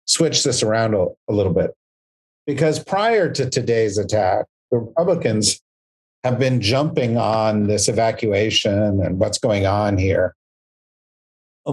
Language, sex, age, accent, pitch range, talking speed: English, male, 50-69, American, 105-130 Hz, 130 wpm